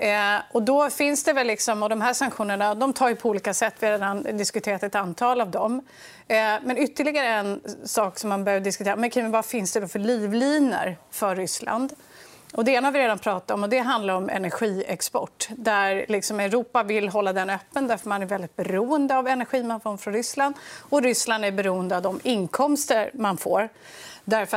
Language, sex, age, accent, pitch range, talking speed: Swedish, female, 30-49, native, 195-250 Hz, 200 wpm